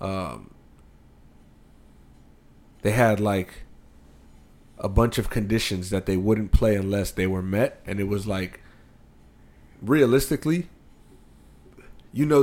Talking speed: 110 wpm